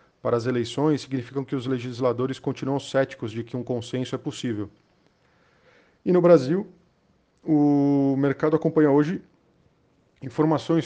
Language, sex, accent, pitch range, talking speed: Portuguese, male, Brazilian, 120-135 Hz, 125 wpm